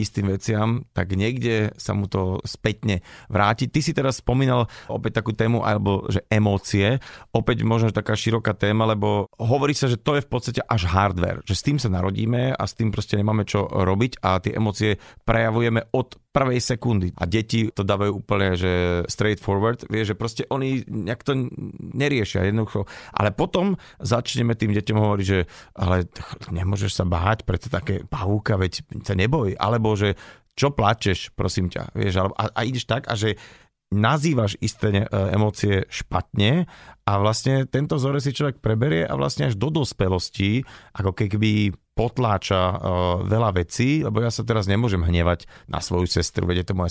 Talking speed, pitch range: 175 wpm, 95-115 Hz